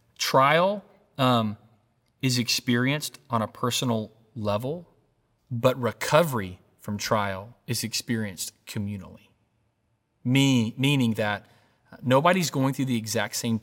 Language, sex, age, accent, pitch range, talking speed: English, male, 30-49, American, 115-140 Hz, 100 wpm